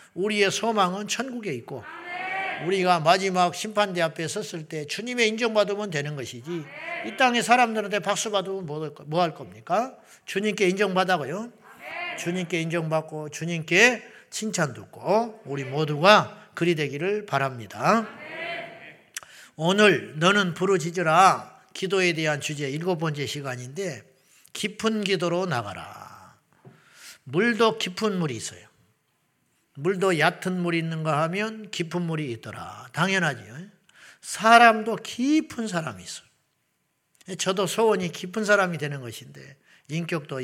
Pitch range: 145-205 Hz